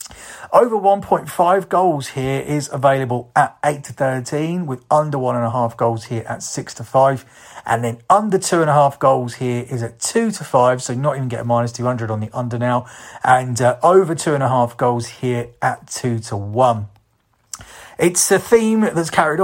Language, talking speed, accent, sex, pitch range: English, 175 wpm, British, male, 130-165 Hz